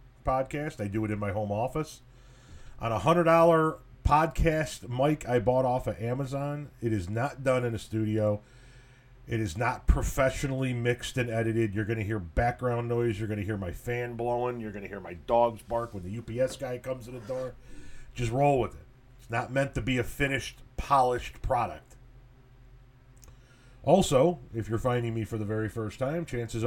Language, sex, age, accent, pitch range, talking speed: English, male, 40-59, American, 110-130 Hz, 190 wpm